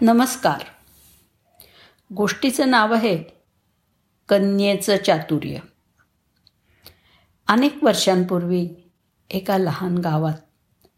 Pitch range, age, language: 150-200 Hz, 50-69, Marathi